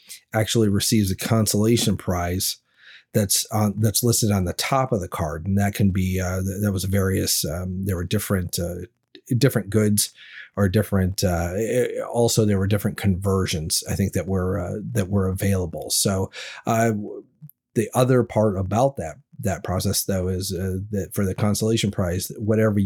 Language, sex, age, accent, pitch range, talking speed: English, male, 40-59, American, 95-115 Hz, 170 wpm